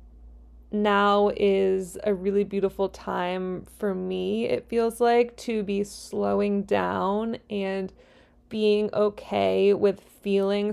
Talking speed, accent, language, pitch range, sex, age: 110 wpm, American, English, 185-225 Hz, female, 20-39